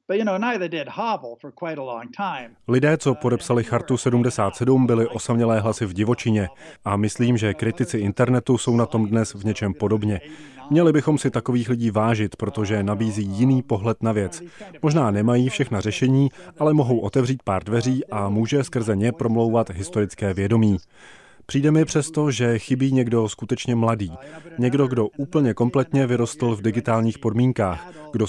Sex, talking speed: male, 140 wpm